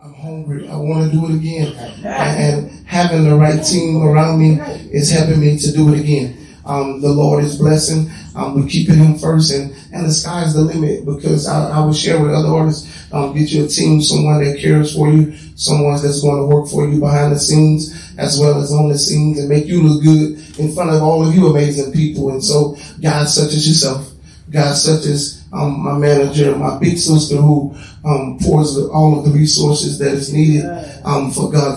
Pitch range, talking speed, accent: 145-155 Hz, 215 wpm, American